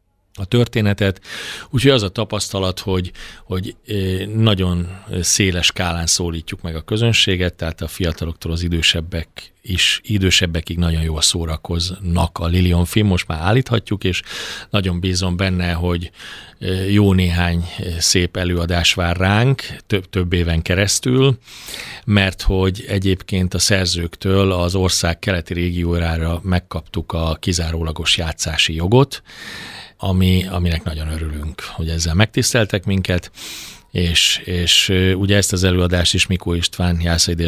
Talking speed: 125 wpm